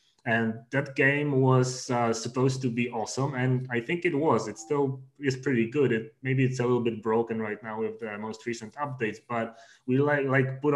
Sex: male